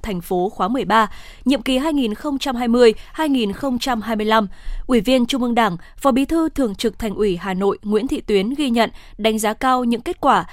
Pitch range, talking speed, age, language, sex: 215-270 Hz, 180 wpm, 20-39, Vietnamese, female